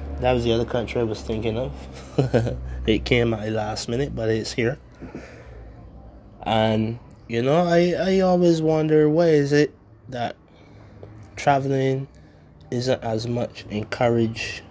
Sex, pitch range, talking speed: male, 110-125 Hz, 140 wpm